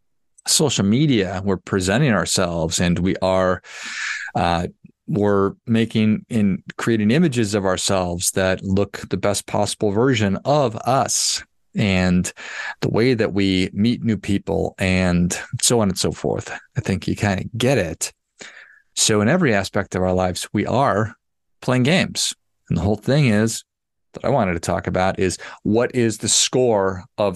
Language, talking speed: English, 160 wpm